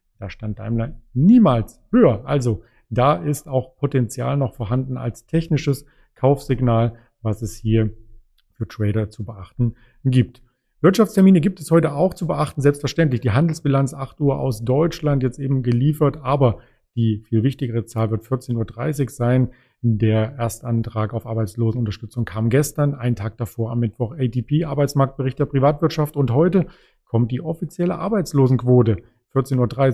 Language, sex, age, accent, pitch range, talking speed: German, male, 40-59, German, 115-145 Hz, 145 wpm